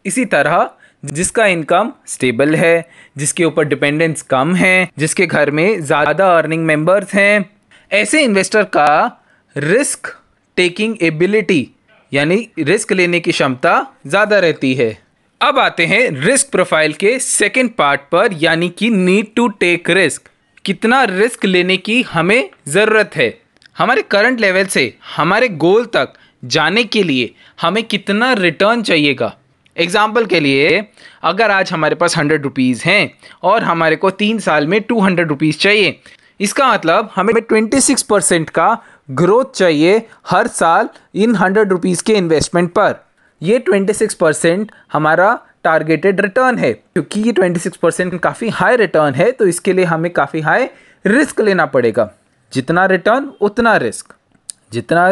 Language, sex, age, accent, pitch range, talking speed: Hindi, male, 20-39, native, 165-220 Hz, 145 wpm